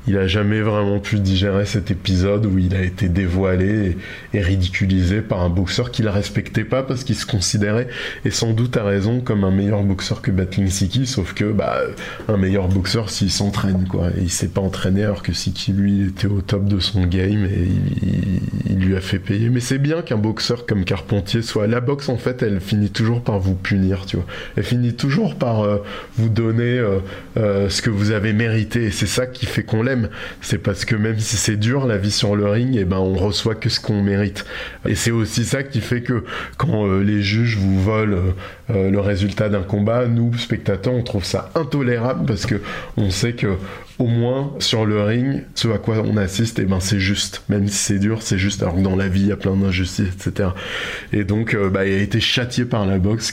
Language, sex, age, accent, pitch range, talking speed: French, male, 20-39, French, 95-115 Hz, 230 wpm